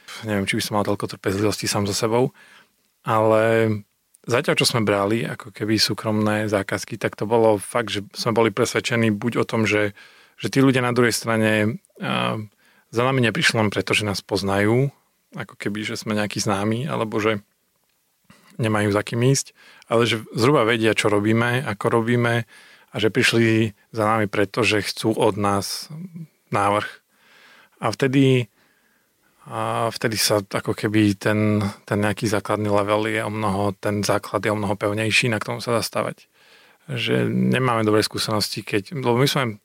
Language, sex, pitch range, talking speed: Slovak, male, 105-120 Hz, 165 wpm